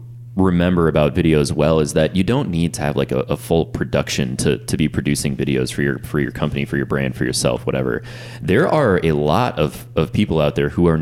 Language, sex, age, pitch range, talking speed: English, male, 20-39, 75-100 Hz, 235 wpm